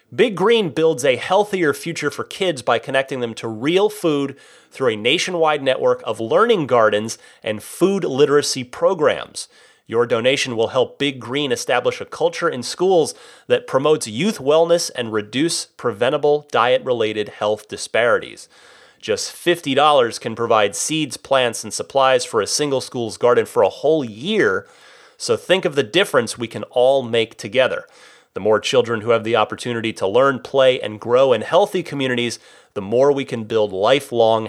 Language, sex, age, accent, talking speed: English, male, 30-49, American, 165 wpm